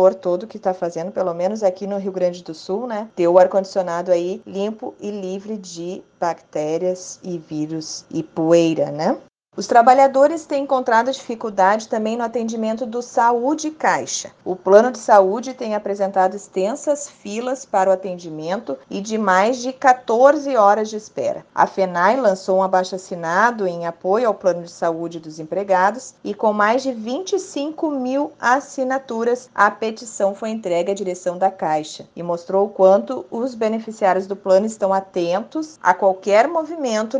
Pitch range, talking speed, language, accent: 185-230 Hz, 160 wpm, Portuguese, Brazilian